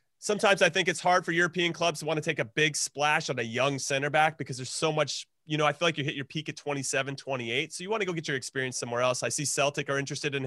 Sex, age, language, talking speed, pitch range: male, 30-49, English, 290 wpm, 135-155 Hz